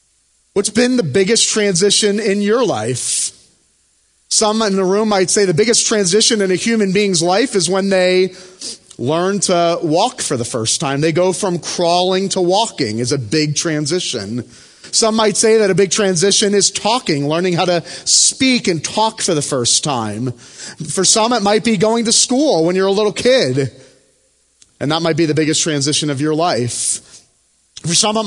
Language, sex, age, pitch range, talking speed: English, male, 30-49, 150-210 Hz, 185 wpm